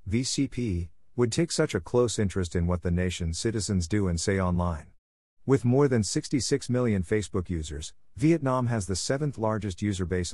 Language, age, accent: English, 40-59, American